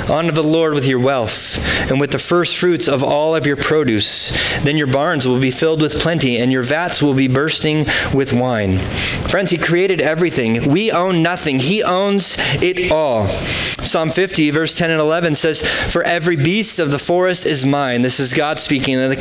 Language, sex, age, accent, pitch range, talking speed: English, male, 30-49, American, 120-160 Hz, 205 wpm